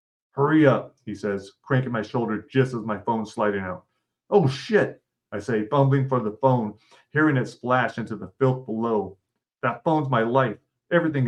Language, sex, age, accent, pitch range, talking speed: English, male, 30-49, American, 110-135 Hz, 175 wpm